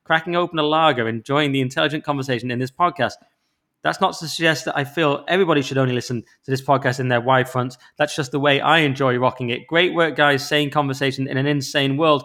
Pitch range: 140-170 Hz